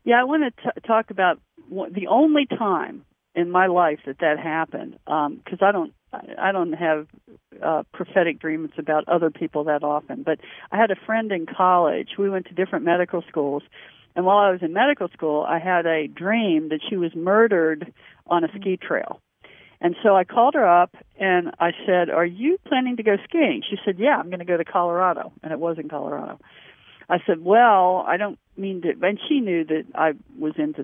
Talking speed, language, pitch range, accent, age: 205 wpm, English, 165-215 Hz, American, 50-69